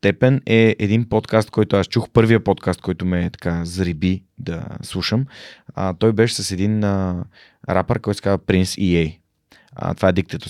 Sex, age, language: male, 30-49, Bulgarian